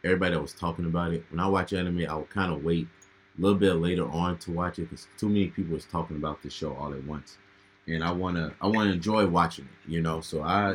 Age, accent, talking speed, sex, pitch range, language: 20-39, American, 255 wpm, male, 85-95 Hz, English